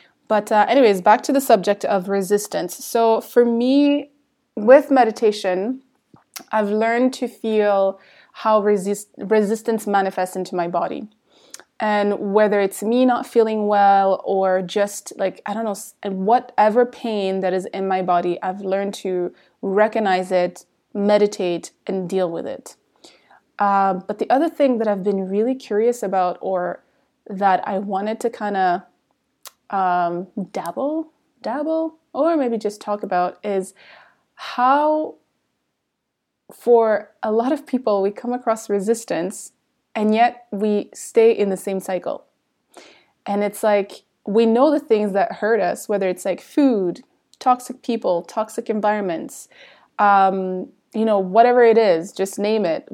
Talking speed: 145 wpm